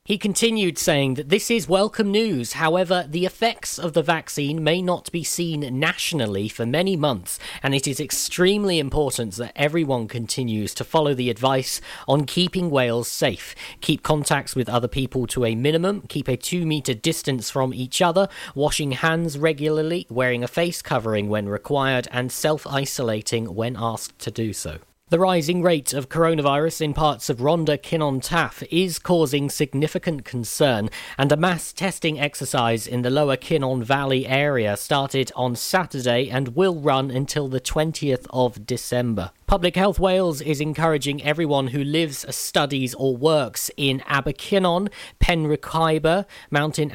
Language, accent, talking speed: English, British, 155 wpm